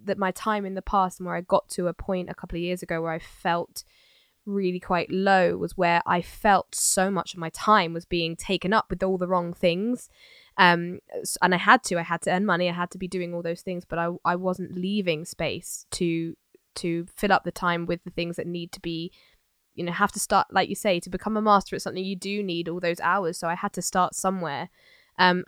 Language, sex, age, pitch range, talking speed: English, female, 10-29, 170-195 Hz, 250 wpm